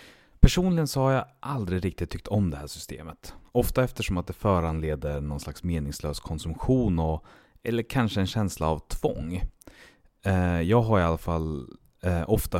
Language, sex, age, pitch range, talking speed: Swedish, male, 30-49, 80-110 Hz, 150 wpm